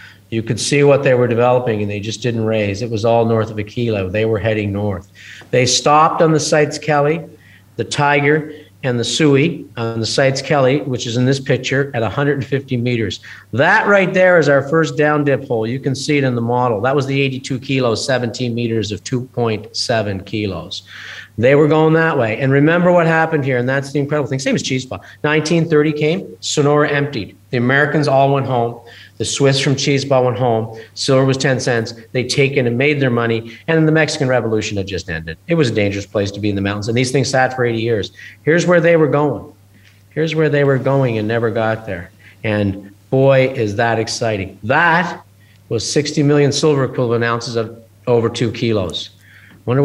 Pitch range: 105-140 Hz